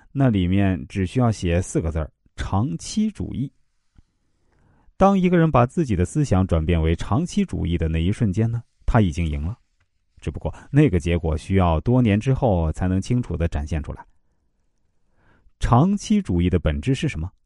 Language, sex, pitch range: Chinese, male, 90-125 Hz